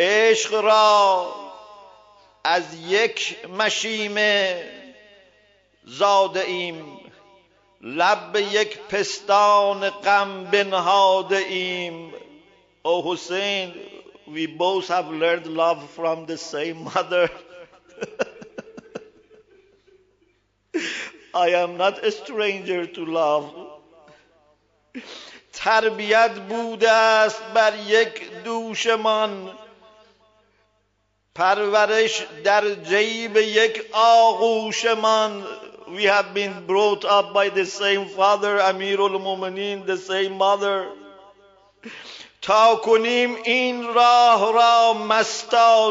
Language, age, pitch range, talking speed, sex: English, 50-69, 195-230 Hz, 70 wpm, male